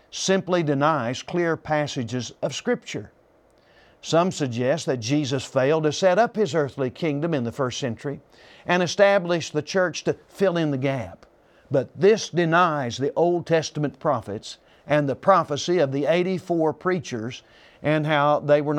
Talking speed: 155 wpm